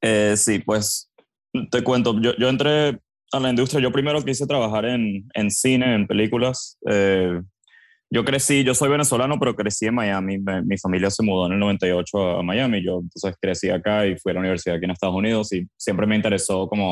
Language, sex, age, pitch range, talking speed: Spanish, male, 20-39, 95-115 Hz, 205 wpm